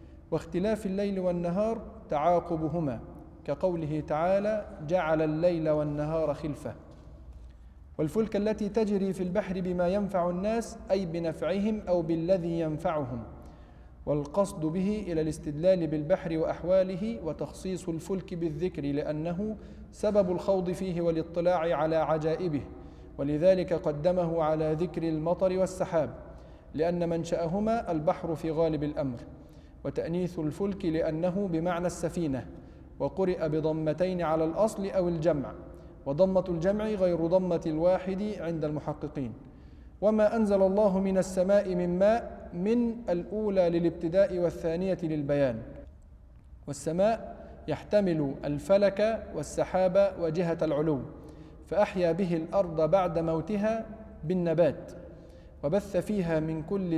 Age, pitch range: 40-59, 155-195 Hz